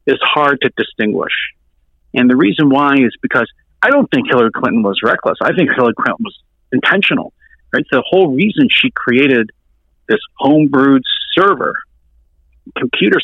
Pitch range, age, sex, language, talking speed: 100-150 Hz, 50-69, male, English, 155 wpm